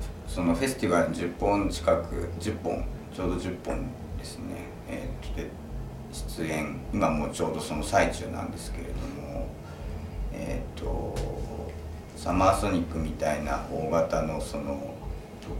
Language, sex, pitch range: Japanese, male, 80-95 Hz